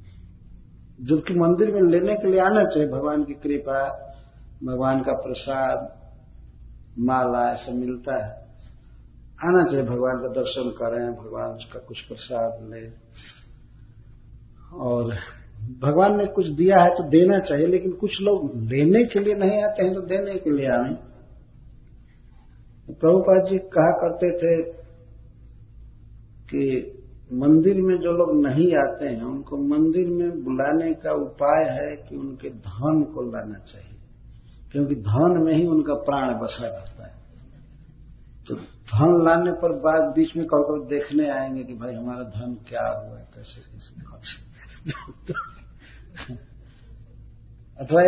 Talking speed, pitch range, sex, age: 135 wpm, 115-170 Hz, male, 50-69